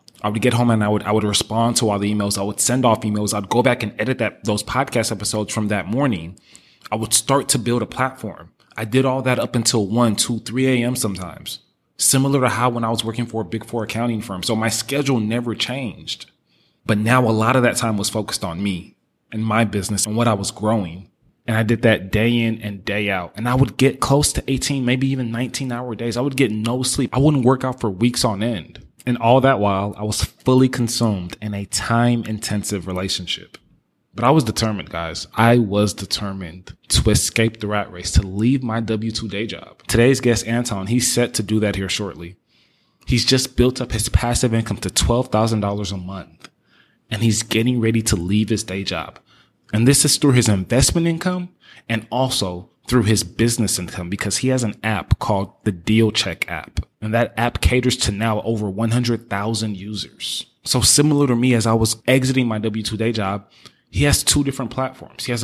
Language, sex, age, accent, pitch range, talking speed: English, male, 20-39, American, 105-125 Hz, 210 wpm